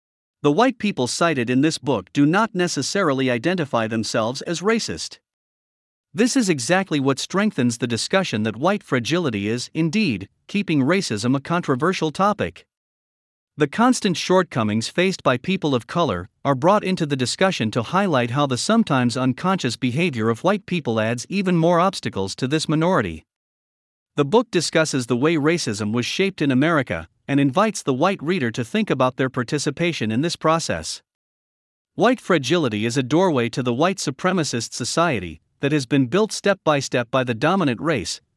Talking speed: 165 wpm